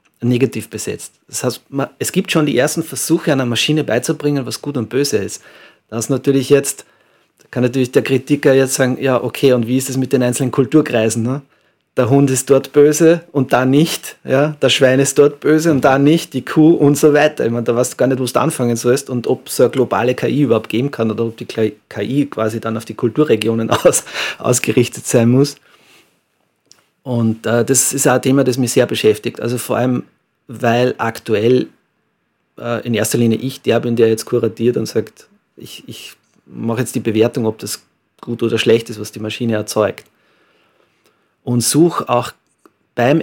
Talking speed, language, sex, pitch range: 195 wpm, German, male, 115-140 Hz